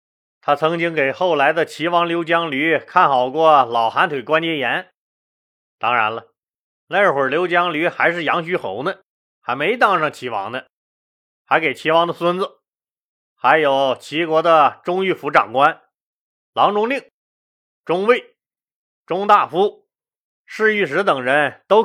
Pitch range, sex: 140-185 Hz, male